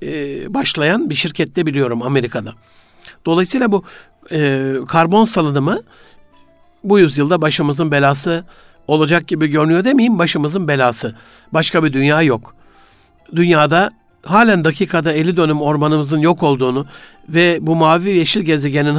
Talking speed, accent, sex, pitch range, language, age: 115 wpm, native, male, 145-185 Hz, Turkish, 60-79